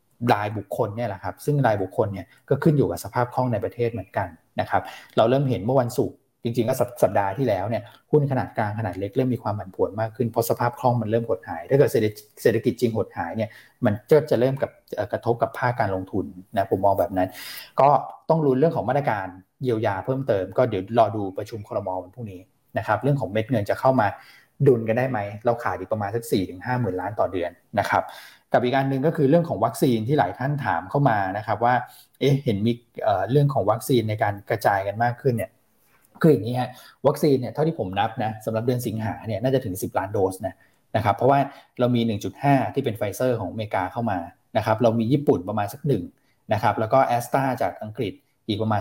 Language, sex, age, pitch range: Thai, male, 20-39, 105-130 Hz